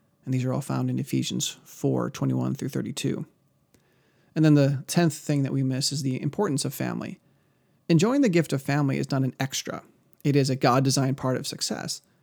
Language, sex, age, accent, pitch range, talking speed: English, male, 30-49, American, 125-145 Hz, 195 wpm